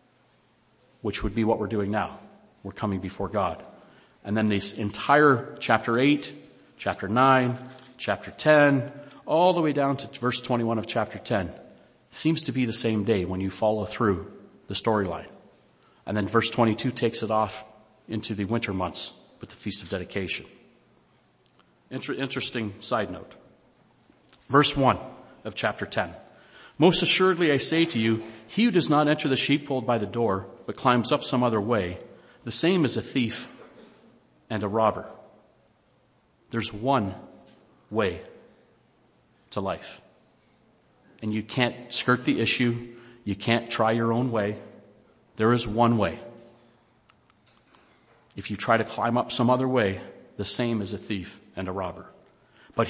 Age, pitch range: 40-59, 105-130 Hz